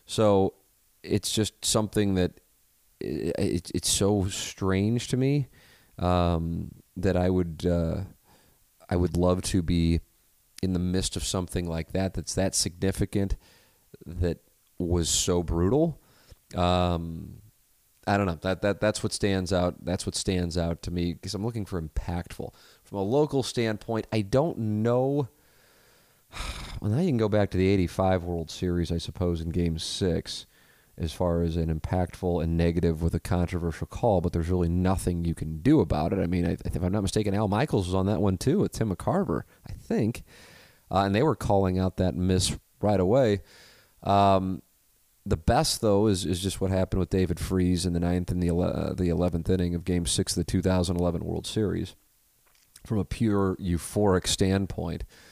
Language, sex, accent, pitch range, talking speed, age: English, male, American, 85-105 Hz, 175 wpm, 30-49